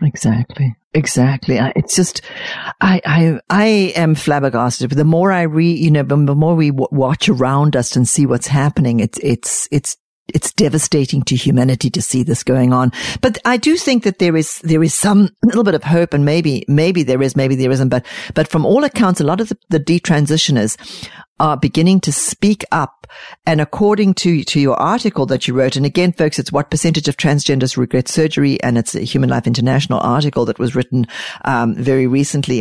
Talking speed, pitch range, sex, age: 200 wpm, 130-175 Hz, female, 50-69